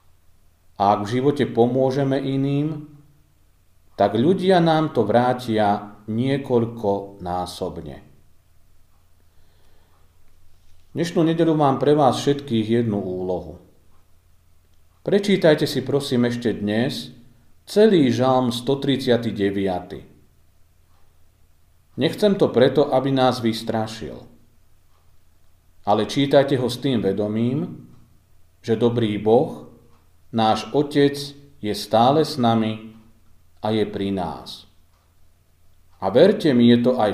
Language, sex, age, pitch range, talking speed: Slovak, male, 40-59, 85-125 Hz, 95 wpm